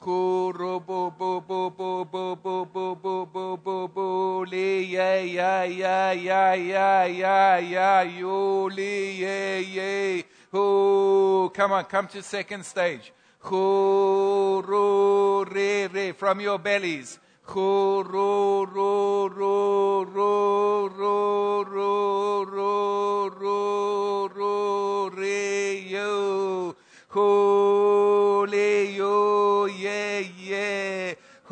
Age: 60-79